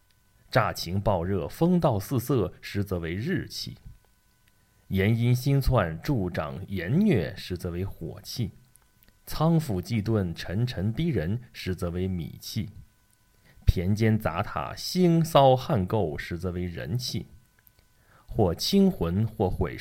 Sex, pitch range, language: male, 95-125 Hz, Chinese